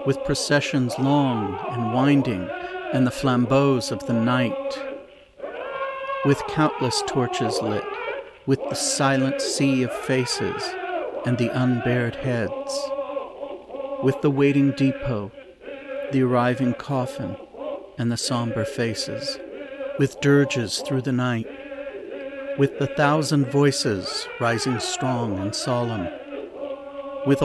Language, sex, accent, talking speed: English, male, American, 110 wpm